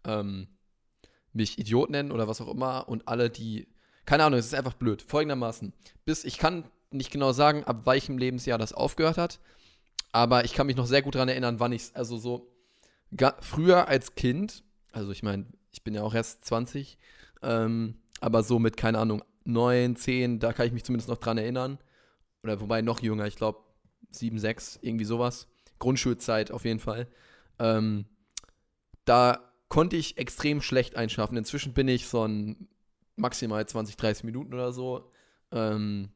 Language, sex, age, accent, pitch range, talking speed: German, male, 20-39, German, 115-135 Hz, 175 wpm